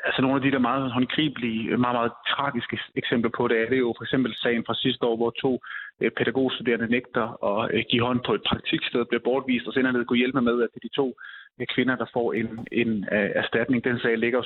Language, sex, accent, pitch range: Danish, male, native, 115-130 Hz